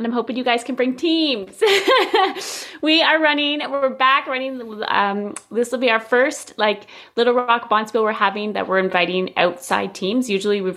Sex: female